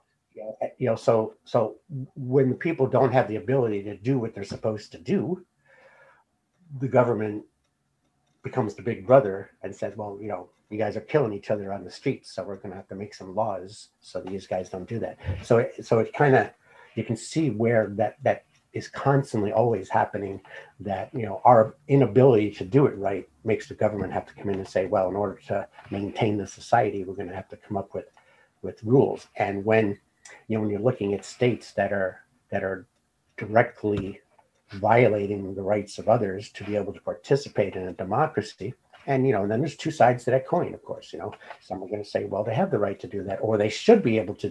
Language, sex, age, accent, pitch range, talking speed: English, male, 60-79, American, 100-125 Hz, 220 wpm